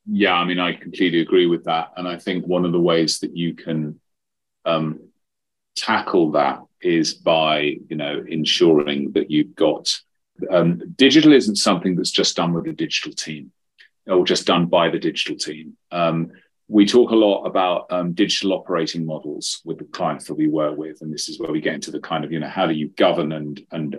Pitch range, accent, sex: 80-95 Hz, British, male